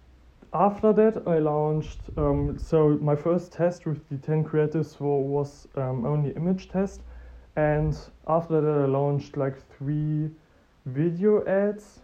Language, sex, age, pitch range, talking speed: English, male, 20-39, 135-160 Hz, 135 wpm